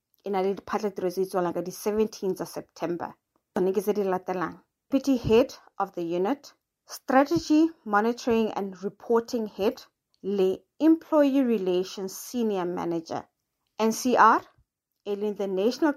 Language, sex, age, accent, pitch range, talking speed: English, female, 30-49, South African, 195-265 Hz, 85 wpm